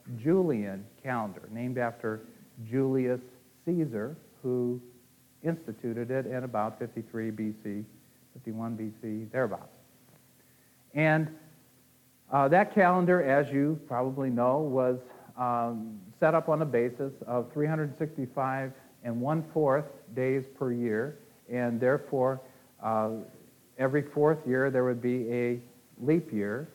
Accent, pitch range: American, 115-140 Hz